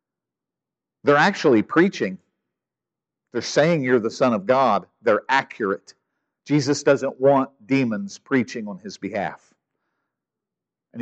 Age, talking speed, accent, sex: 50-69, 115 wpm, American, male